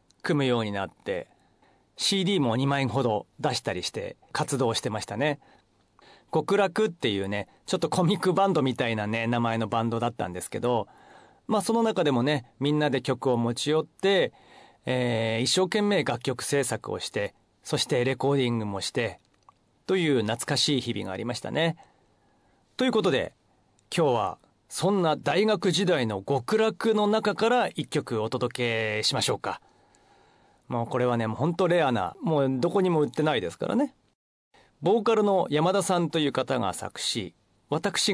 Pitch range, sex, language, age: 120-185 Hz, male, Japanese, 40-59